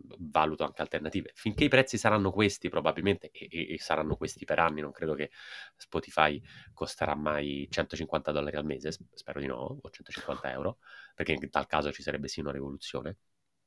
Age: 30-49